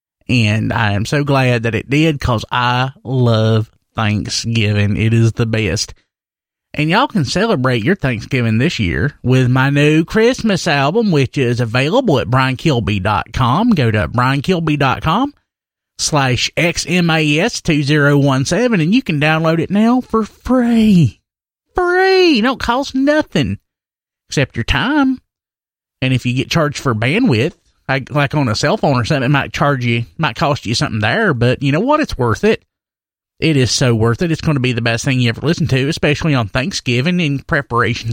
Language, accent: English, American